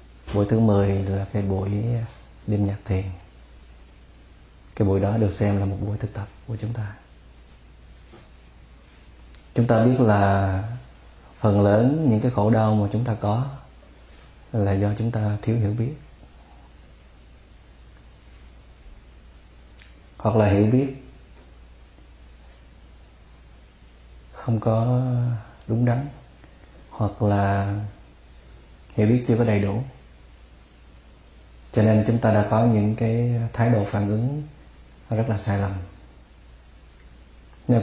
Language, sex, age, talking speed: Vietnamese, male, 30-49, 120 wpm